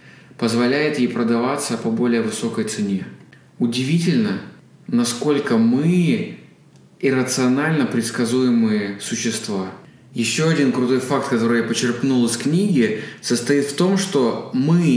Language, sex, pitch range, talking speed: Russian, male, 125-155 Hz, 110 wpm